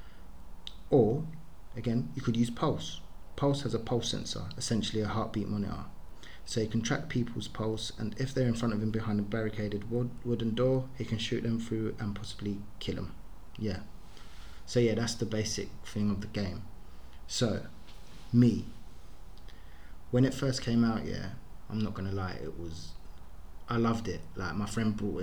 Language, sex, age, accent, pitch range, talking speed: English, male, 20-39, British, 95-115 Hz, 175 wpm